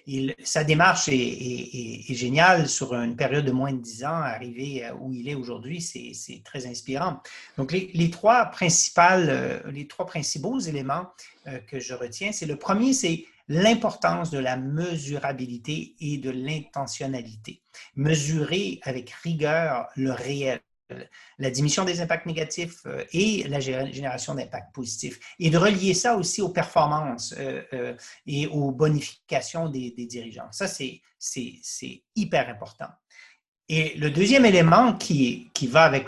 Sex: male